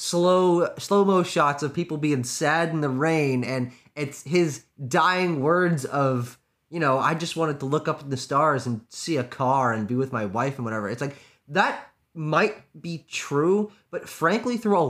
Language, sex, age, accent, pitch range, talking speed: English, male, 20-39, American, 135-185 Hz, 195 wpm